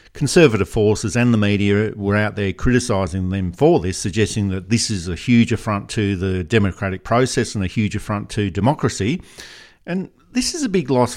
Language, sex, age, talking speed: English, male, 50-69, 190 wpm